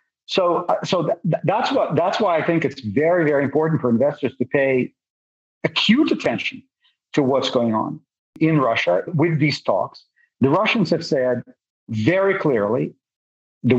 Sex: male